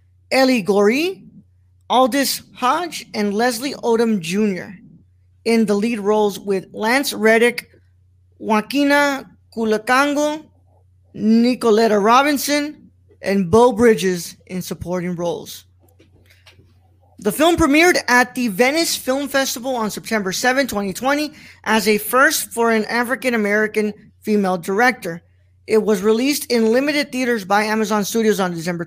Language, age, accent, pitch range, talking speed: English, 20-39, American, 200-265 Hz, 115 wpm